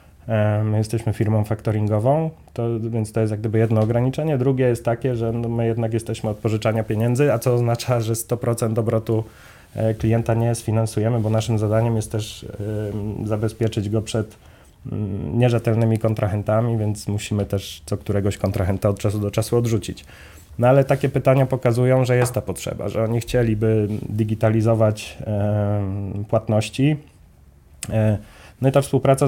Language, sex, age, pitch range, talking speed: Polish, male, 20-39, 105-115 Hz, 140 wpm